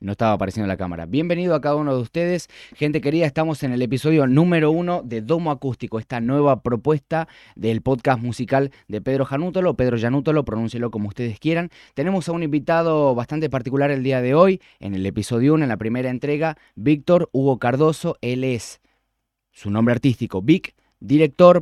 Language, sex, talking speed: Spanish, male, 180 wpm